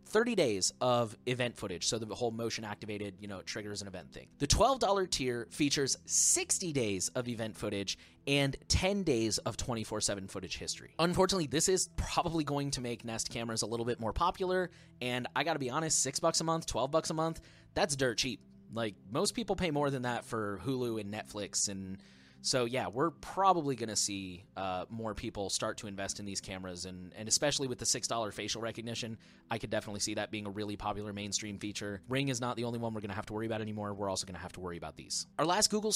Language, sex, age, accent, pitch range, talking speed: English, male, 30-49, American, 105-155 Hz, 220 wpm